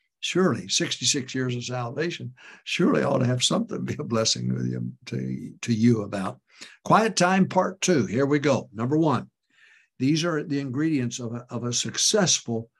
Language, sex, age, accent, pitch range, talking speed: English, male, 60-79, American, 115-155 Hz, 165 wpm